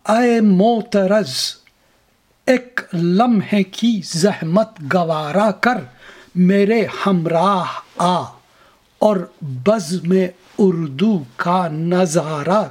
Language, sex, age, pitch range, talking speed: Urdu, male, 60-79, 180-225 Hz, 80 wpm